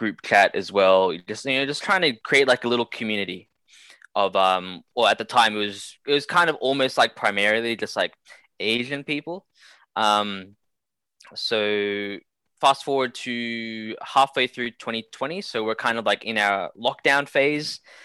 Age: 10-29